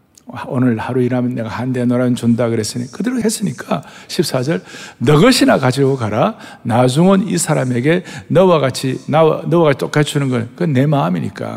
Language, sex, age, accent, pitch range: Korean, male, 60-79, native, 125-190 Hz